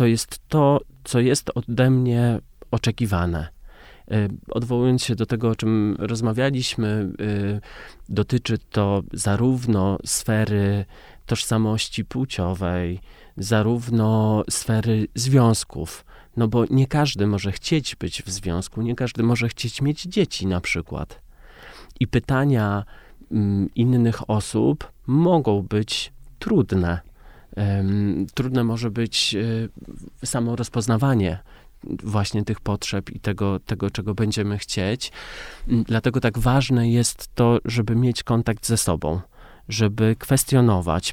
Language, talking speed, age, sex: Polish, 110 wpm, 30-49, male